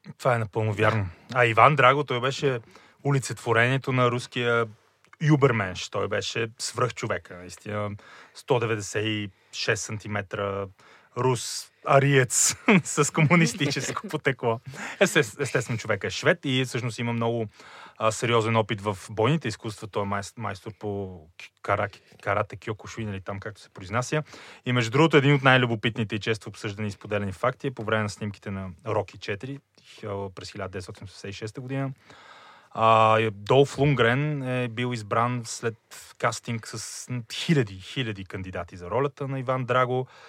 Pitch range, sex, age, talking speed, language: 105-130 Hz, male, 30-49, 140 wpm, Bulgarian